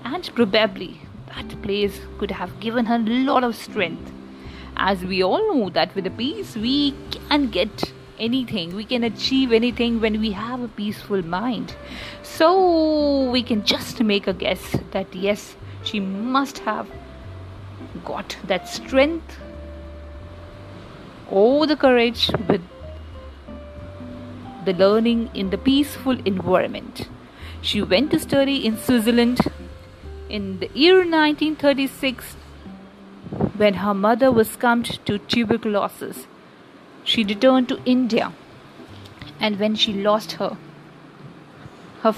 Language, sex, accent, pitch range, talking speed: English, female, Indian, 185-250 Hz, 125 wpm